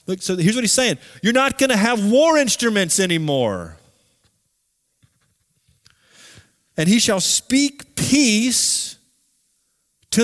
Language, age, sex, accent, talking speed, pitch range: English, 30-49, male, American, 115 wpm, 175-235 Hz